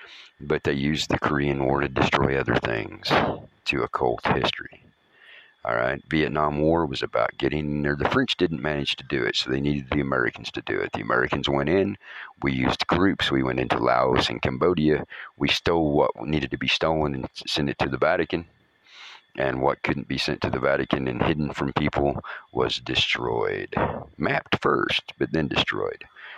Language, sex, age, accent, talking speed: English, male, 50-69, American, 185 wpm